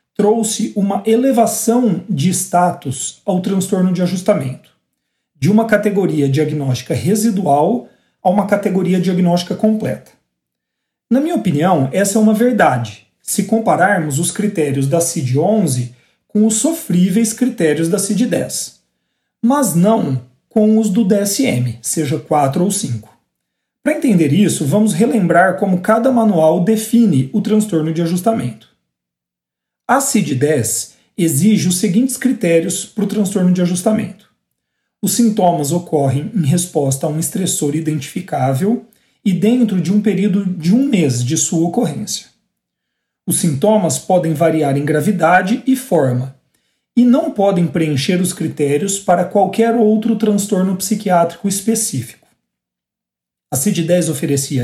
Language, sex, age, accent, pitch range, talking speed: Portuguese, male, 40-59, Brazilian, 155-215 Hz, 130 wpm